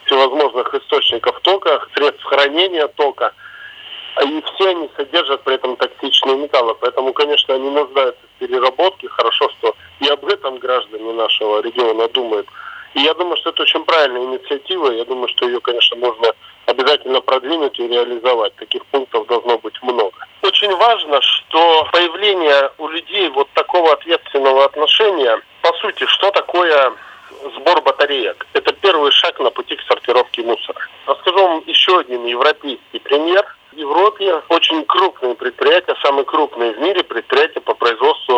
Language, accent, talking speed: Russian, native, 150 wpm